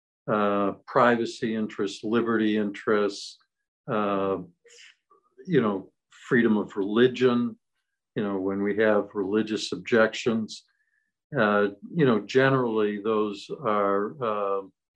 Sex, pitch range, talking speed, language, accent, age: male, 100-120 Hz, 100 wpm, English, American, 60-79